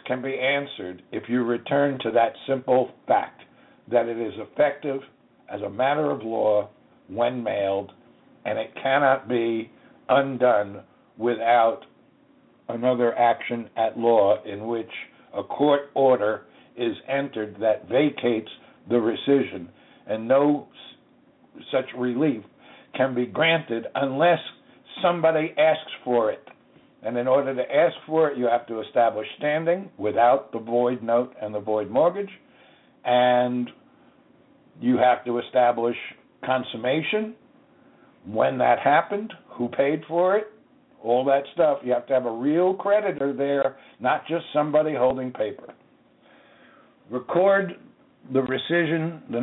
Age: 60-79